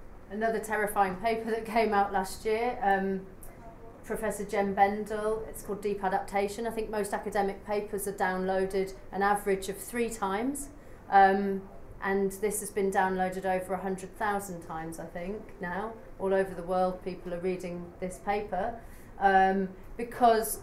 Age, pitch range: 40-59, 180-205 Hz